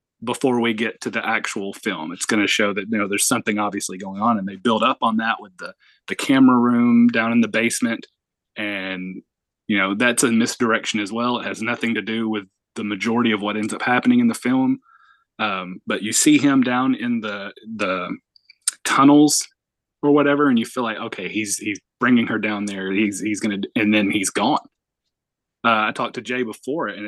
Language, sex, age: English, male, 20-39